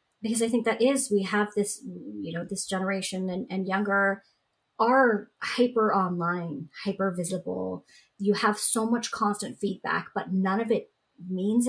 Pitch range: 195-240 Hz